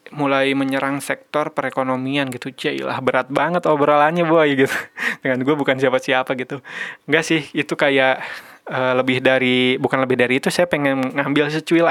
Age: 20-39